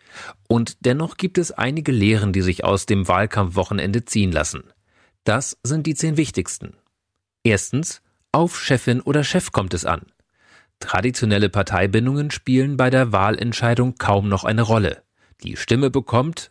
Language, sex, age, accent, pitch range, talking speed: German, male, 40-59, German, 95-130 Hz, 140 wpm